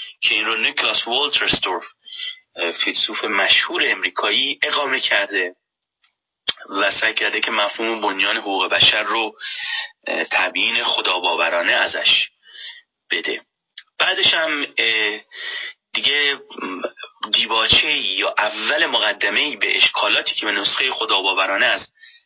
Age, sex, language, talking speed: 30-49, male, Persian, 95 wpm